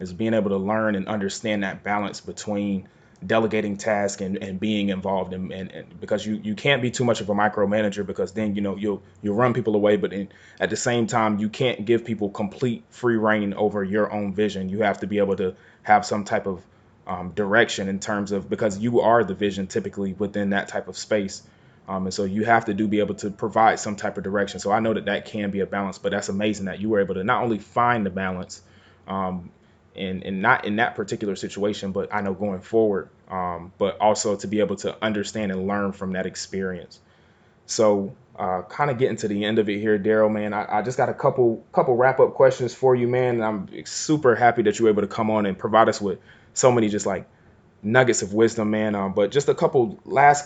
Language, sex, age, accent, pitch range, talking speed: English, male, 20-39, American, 100-115 Hz, 235 wpm